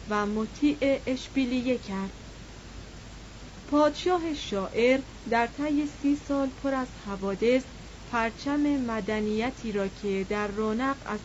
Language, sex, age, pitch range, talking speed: Persian, female, 30-49, 210-265 Hz, 105 wpm